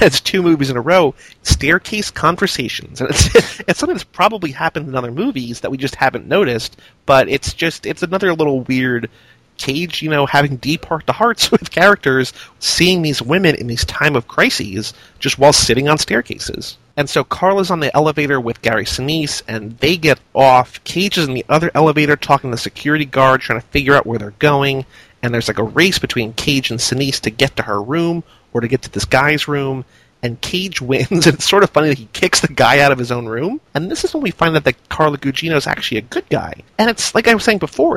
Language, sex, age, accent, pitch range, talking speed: English, male, 30-49, American, 125-165 Hz, 225 wpm